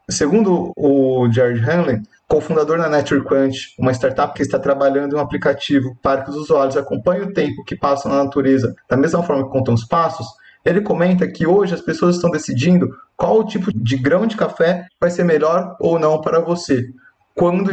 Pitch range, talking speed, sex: 135-180 Hz, 190 wpm, male